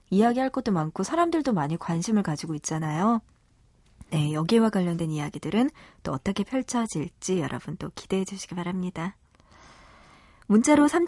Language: Korean